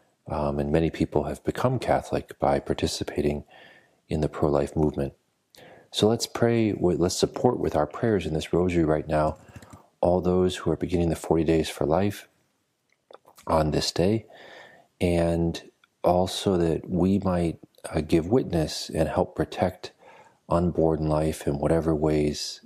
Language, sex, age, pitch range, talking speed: English, male, 40-59, 75-95 Hz, 150 wpm